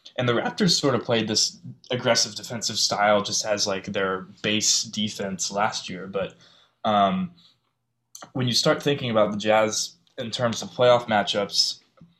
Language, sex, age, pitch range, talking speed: English, male, 20-39, 110-130 Hz, 160 wpm